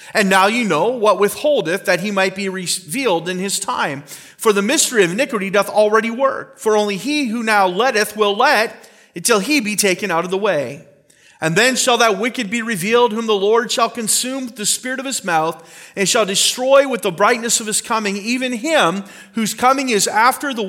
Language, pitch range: English, 195-245 Hz